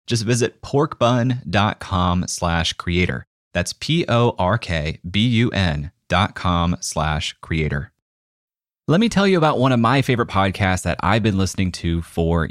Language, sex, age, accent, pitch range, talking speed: English, male, 30-49, American, 85-120 Hz, 130 wpm